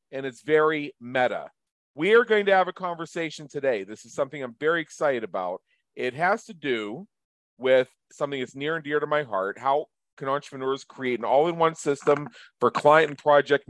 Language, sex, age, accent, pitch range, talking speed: English, male, 40-59, American, 125-170 Hz, 190 wpm